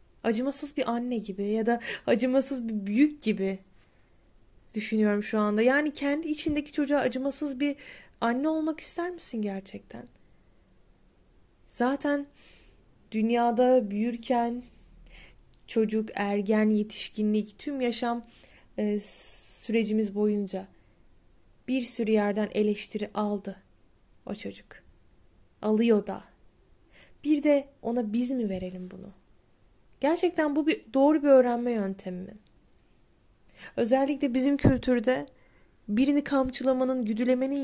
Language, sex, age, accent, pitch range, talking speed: Turkish, female, 10-29, native, 210-270 Hz, 100 wpm